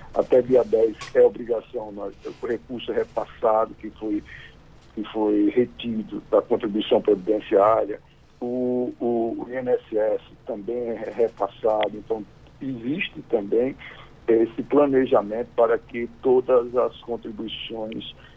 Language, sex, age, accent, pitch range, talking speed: Portuguese, male, 60-79, Brazilian, 110-130 Hz, 110 wpm